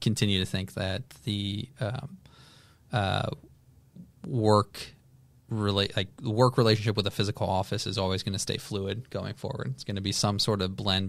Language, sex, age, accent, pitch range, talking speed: English, male, 20-39, American, 95-115 Hz, 175 wpm